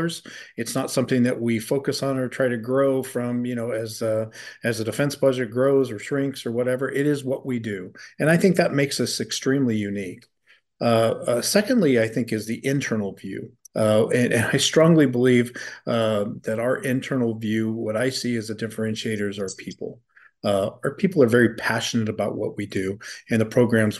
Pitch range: 110-130 Hz